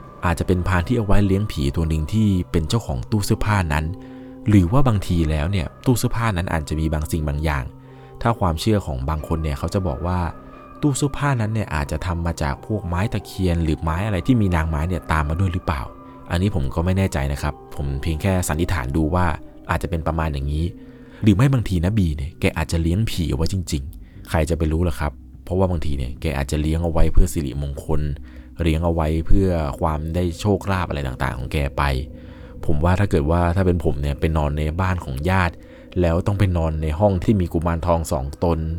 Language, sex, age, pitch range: Thai, male, 20-39, 80-95 Hz